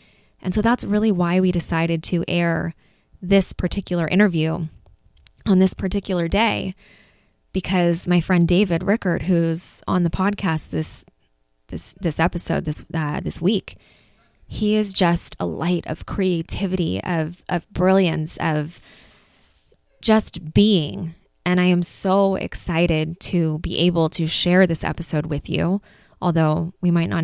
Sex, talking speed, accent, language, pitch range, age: female, 140 wpm, American, English, 160-185 Hz, 20-39